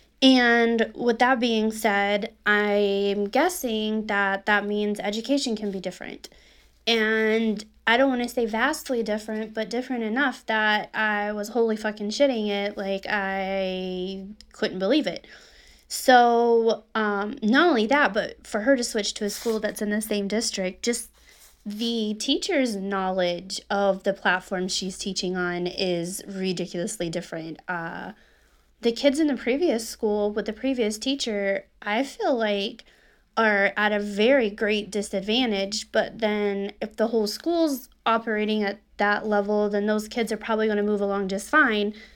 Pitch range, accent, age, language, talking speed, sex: 200-235 Hz, American, 20-39, English, 155 wpm, female